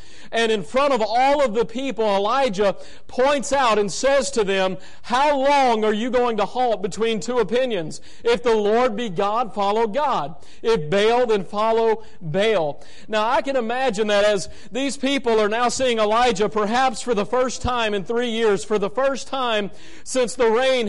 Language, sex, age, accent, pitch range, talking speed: English, male, 40-59, American, 210-255 Hz, 185 wpm